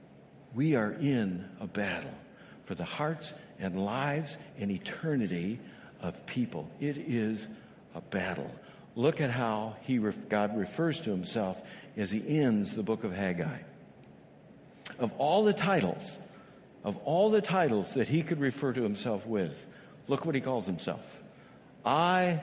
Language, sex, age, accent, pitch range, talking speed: English, male, 60-79, American, 100-135 Hz, 140 wpm